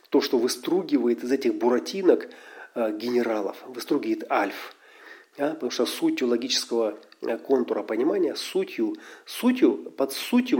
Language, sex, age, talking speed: Russian, male, 40-59, 110 wpm